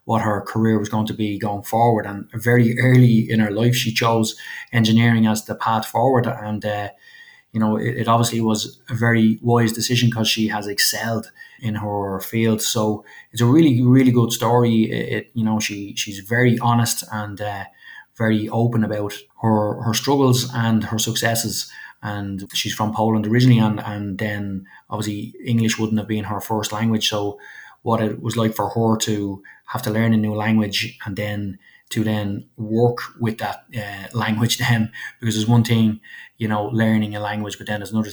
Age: 20-39